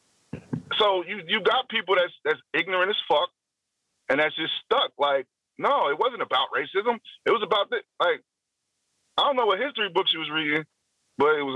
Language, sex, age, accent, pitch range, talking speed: English, male, 40-59, American, 150-245 Hz, 190 wpm